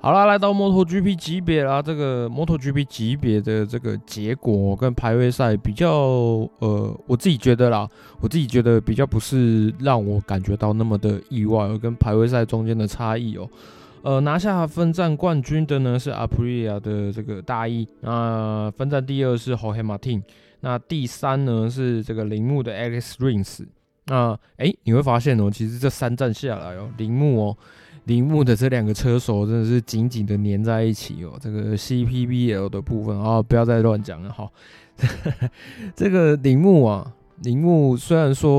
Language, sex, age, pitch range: Chinese, male, 20-39, 110-135 Hz